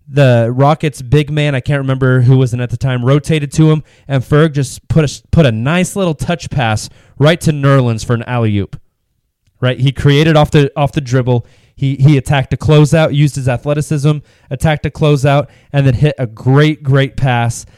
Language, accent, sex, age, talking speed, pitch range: English, American, male, 20-39, 200 wpm, 120-150 Hz